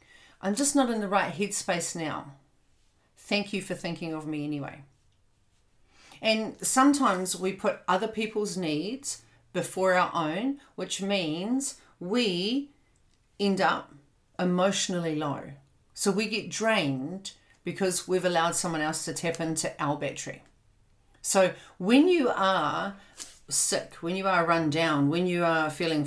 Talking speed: 140 wpm